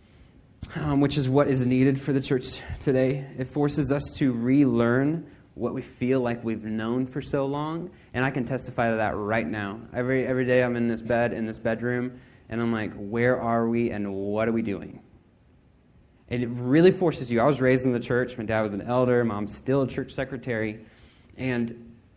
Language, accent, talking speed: English, American, 205 wpm